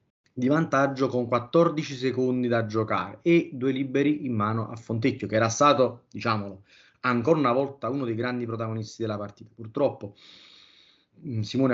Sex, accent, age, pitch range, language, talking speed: male, native, 20-39, 110-135 Hz, Italian, 150 wpm